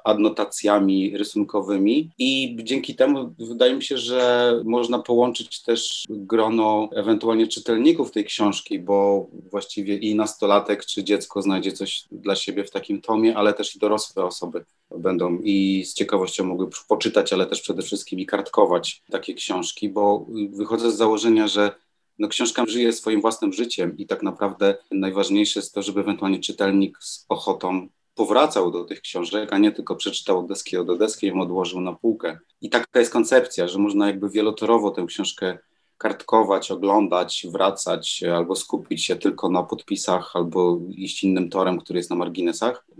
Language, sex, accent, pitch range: Polish, male, native, 95-115 Hz